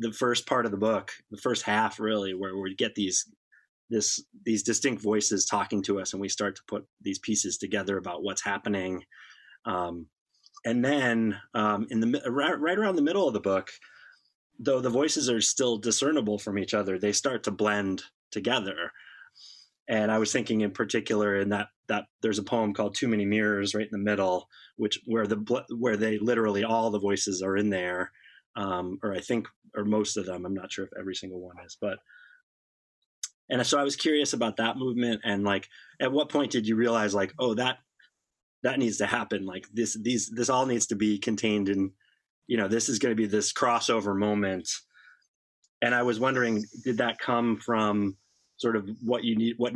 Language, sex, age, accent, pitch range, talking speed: English, male, 20-39, American, 100-115 Hz, 200 wpm